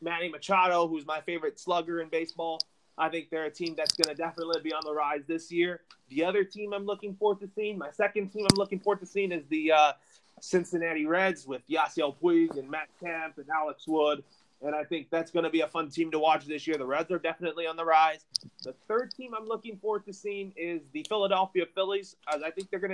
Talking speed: 235 wpm